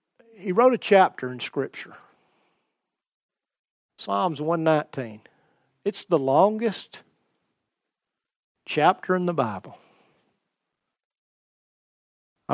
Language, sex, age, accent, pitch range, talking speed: English, male, 50-69, American, 160-225 Hz, 75 wpm